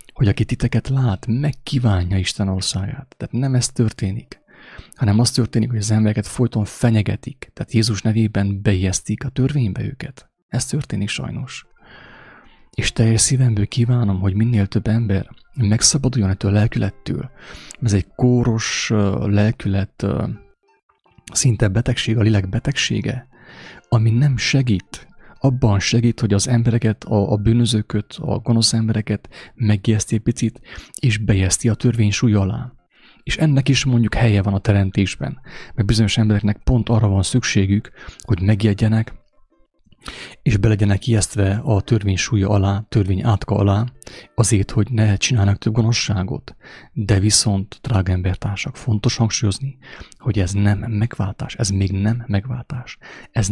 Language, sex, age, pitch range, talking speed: English, male, 30-49, 100-120 Hz, 130 wpm